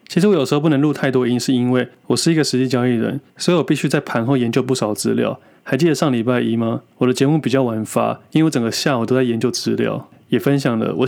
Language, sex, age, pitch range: Chinese, male, 20-39, 115-140 Hz